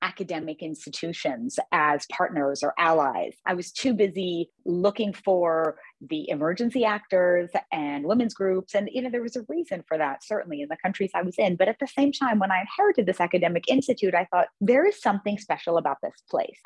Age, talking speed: 30-49, 195 wpm